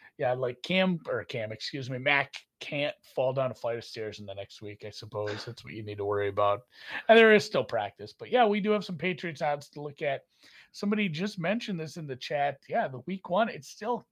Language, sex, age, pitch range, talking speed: English, male, 30-49, 120-160 Hz, 240 wpm